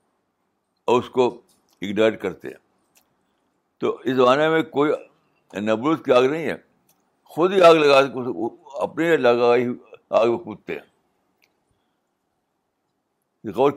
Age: 60-79